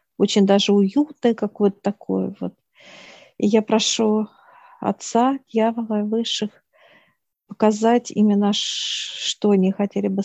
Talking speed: 115 wpm